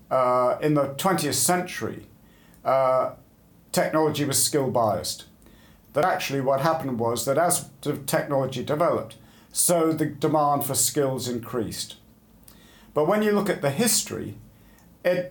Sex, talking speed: male, 125 wpm